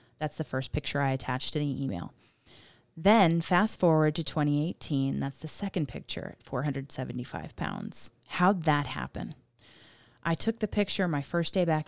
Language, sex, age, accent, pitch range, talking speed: English, female, 20-39, American, 135-165 Hz, 160 wpm